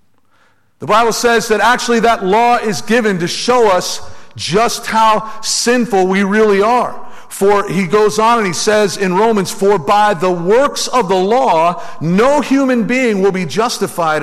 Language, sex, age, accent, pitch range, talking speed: English, male, 50-69, American, 165-225 Hz, 170 wpm